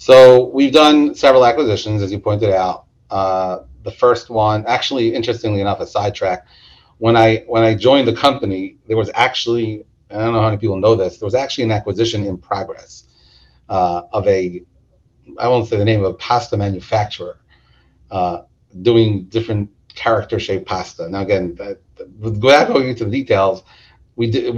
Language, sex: English, male